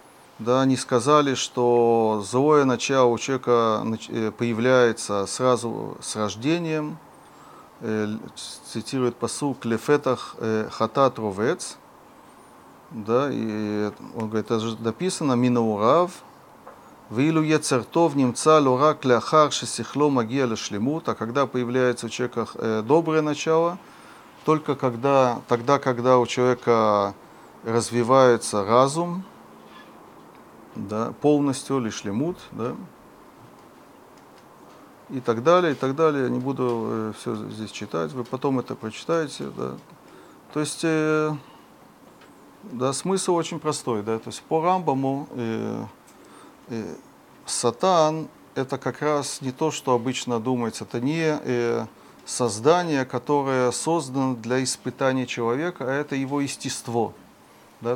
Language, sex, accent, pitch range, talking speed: Russian, male, native, 115-145 Hz, 110 wpm